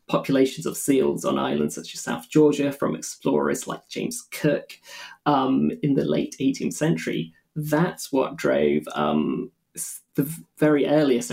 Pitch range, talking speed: 130-155 Hz, 145 wpm